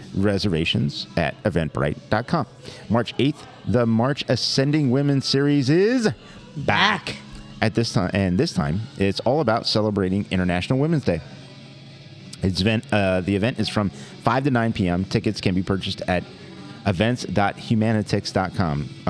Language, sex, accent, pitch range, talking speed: English, male, American, 90-125 Hz, 130 wpm